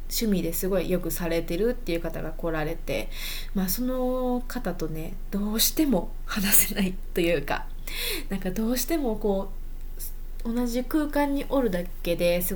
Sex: female